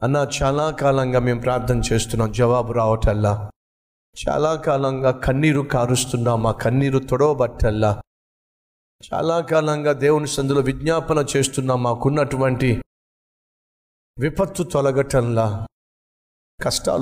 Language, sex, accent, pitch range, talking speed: Telugu, male, native, 115-155 Hz, 50 wpm